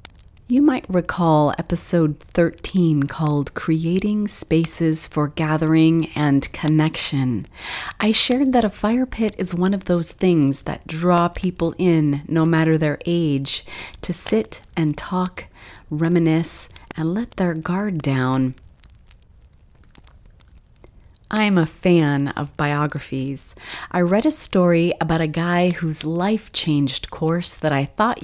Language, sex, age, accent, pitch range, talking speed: English, female, 30-49, American, 145-180 Hz, 125 wpm